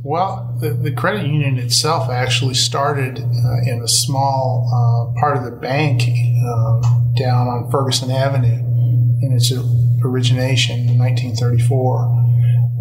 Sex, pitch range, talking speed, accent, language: male, 120-130 Hz, 125 wpm, American, English